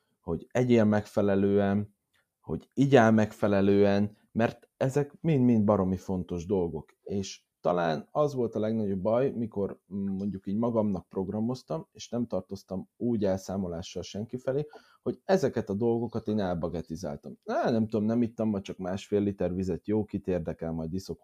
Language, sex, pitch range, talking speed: Hungarian, male, 95-120 Hz, 145 wpm